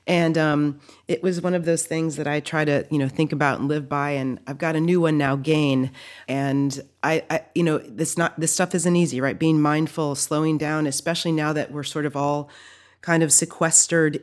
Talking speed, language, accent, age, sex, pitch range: 225 wpm, English, American, 30-49, female, 150-185 Hz